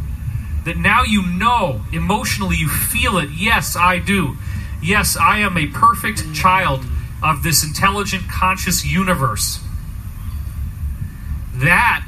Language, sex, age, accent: English, male, 40-59, American